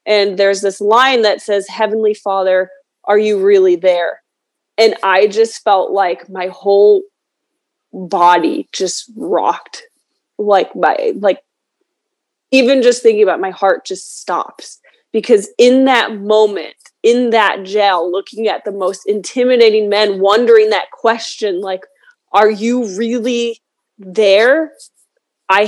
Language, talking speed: English, 130 wpm